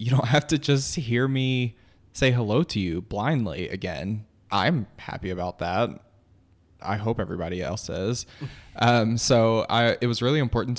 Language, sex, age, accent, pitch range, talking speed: English, male, 20-39, American, 100-120 Hz, 155 wpm